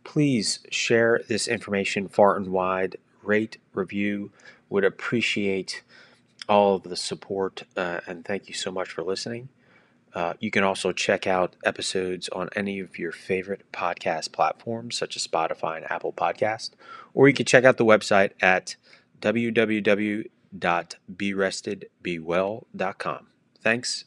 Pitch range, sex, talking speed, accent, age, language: 95-110 Hz, male, 130 wpm, American, 30-49, English